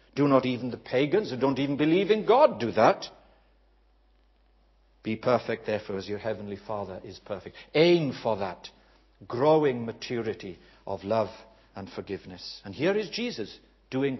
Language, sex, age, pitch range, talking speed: English, male, 60-79, 105-170 Hz, 150 wpm